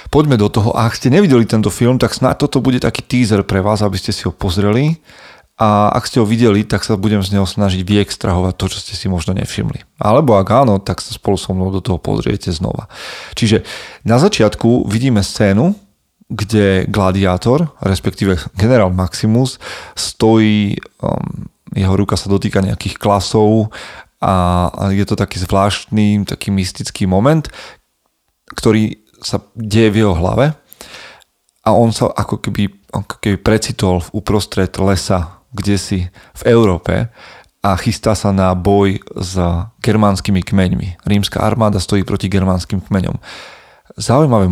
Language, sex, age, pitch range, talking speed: Slovak, male, 30-49, 95-110 Hz, 150 wpm